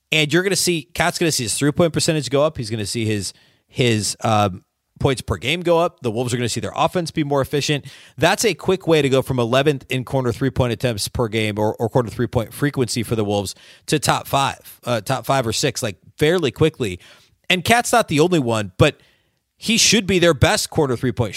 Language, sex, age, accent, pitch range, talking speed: English, male, 30-49, American, 120-165 Hz, 245 wpm